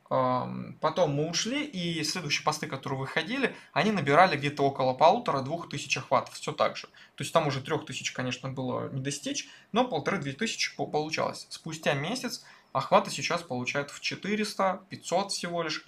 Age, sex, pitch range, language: 20-39, male, 135-170 Hz, Russian